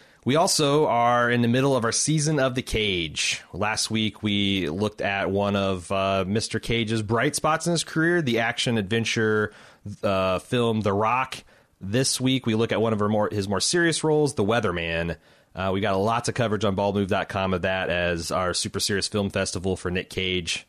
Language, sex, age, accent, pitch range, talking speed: English, male, 30-49, American, 100-125 Hz, 185 wpm